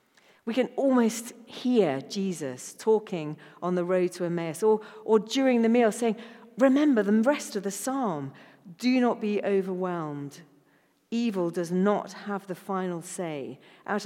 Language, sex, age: English, female, 40-59